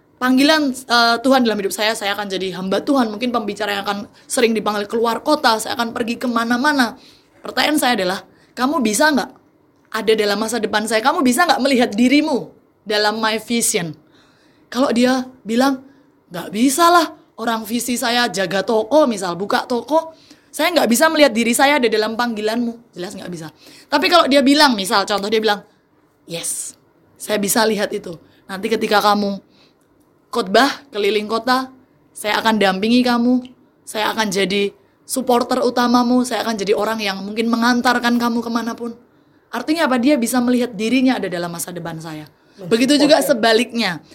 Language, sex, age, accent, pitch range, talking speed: Indonesian, female, 20-39, native, 205-260 Hz, 160 wpm